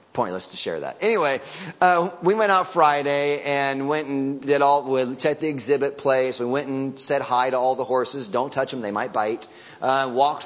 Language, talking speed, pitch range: English, 210 wpm, 130-155 Hz